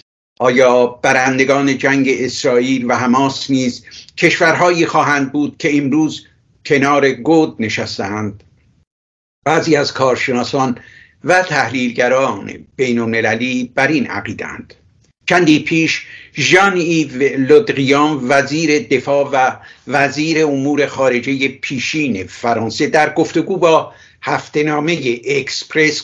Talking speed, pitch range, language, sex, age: 100 wpm, 130-165 Hz, Persian, male, 60-79